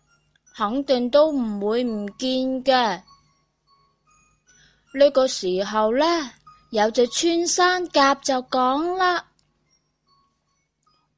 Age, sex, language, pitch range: 20-39, female, Chinese, 230-325 Hz